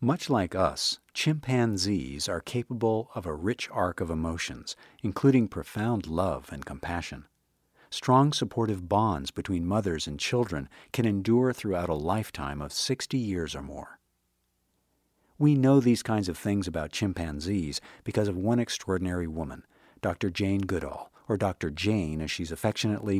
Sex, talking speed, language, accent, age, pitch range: male, 145 wpm, English, American, 50-69, 80-110 Hz